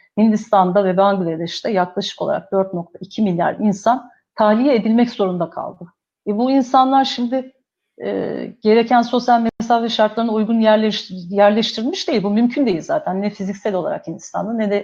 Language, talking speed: Turkish, 140 wpm